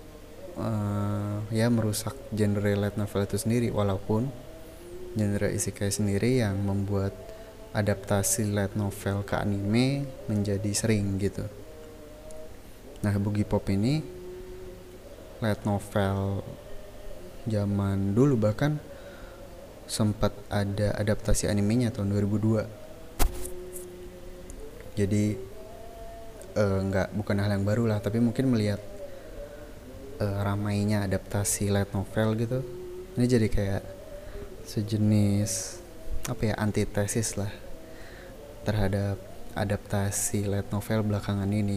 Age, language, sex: 20-39, Indonesian, male